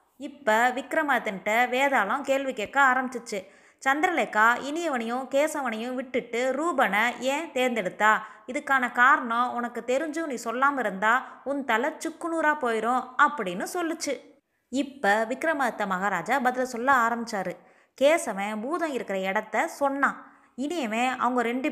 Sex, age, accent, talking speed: female, 20-39, native, 110 wpm